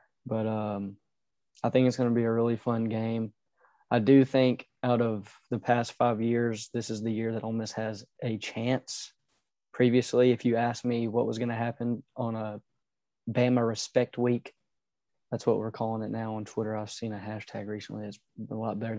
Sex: male